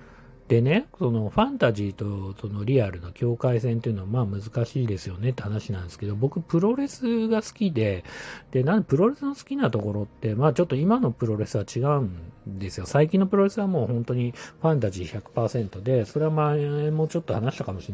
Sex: male